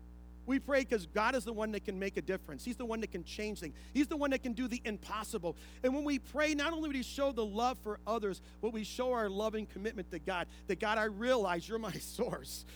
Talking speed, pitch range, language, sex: 260 wpm, 170-250 Hz, English, male